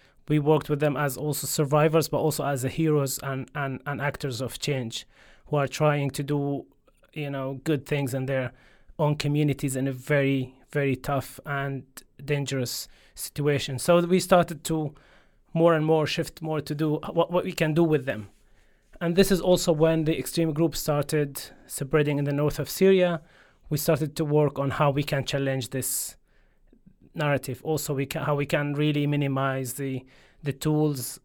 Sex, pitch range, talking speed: male, 135-155 Hz, 180 wpm